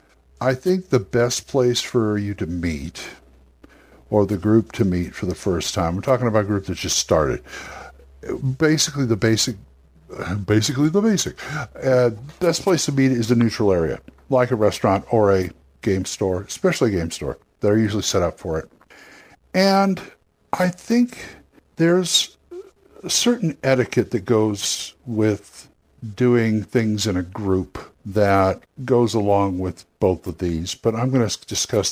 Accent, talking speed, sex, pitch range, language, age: American, 160 wpm, male, 95-140 Hz, English, 60-79